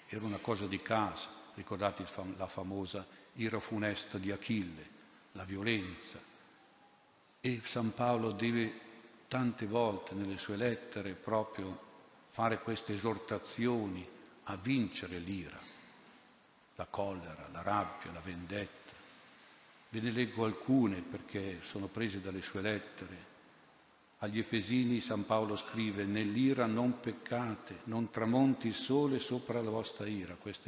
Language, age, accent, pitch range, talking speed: Italian, 50-69, native, 100-115 Hz, 125 wpm